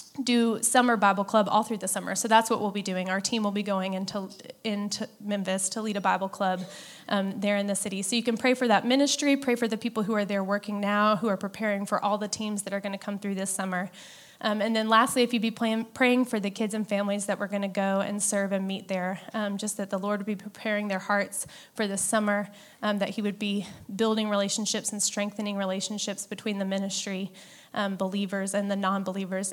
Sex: female